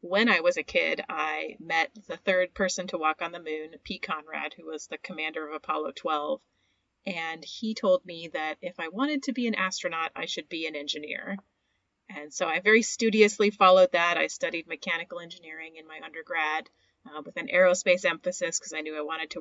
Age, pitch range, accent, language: 30-49, 165-205 Hz, American, English